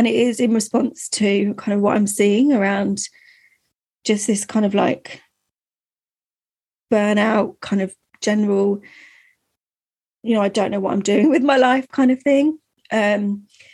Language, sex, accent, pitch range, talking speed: English, female, British, 200-240 Hz, 155 wpm